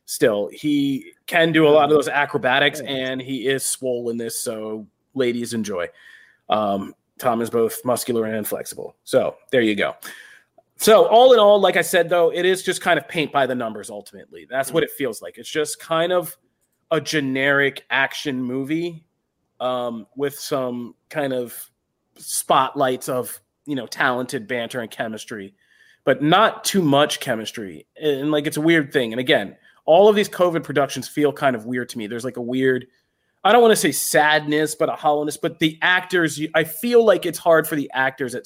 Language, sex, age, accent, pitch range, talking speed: English, male, 30-49, American, 130-170 Hz, 190 wpm